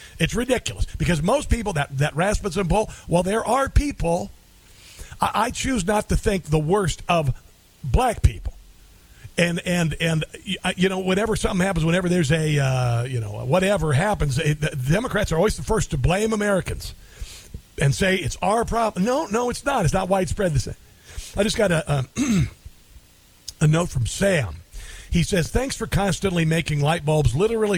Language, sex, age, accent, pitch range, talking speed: English, male, 50-69, American, 140-200 Hz, 175 wpm